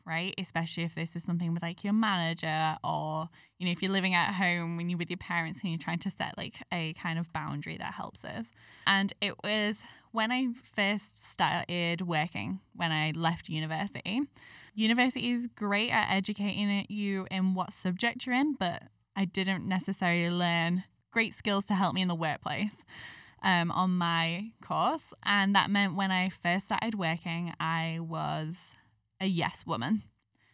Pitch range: 170-210 Hz